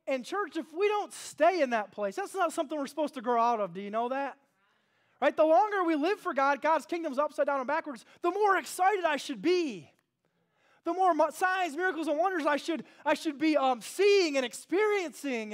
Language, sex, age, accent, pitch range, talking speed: English, male, 20-39, American, 225-325 Hz, 220 wpm